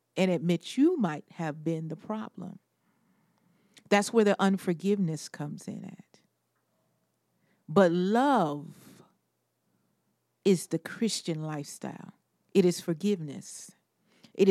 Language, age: English, 40-59